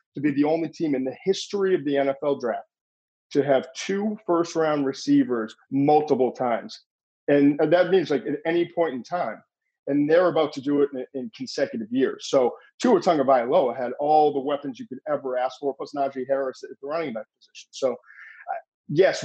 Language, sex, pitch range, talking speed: English, male, 135-175 Hz, 185 wpm